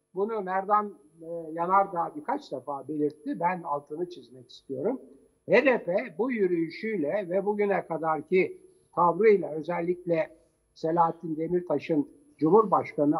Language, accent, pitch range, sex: Turkish, native, 160-205 Hz, male